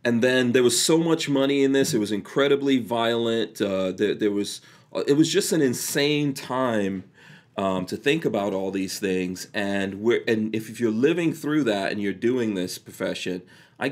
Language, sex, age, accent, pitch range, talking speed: English, male, 30-49, American, 100-135 Hz, 195 wpm